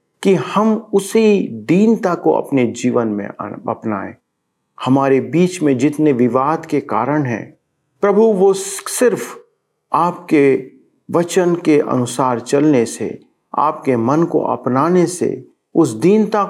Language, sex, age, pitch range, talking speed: Hindi, male, 50-69, 130-185 Hz, 120 wpm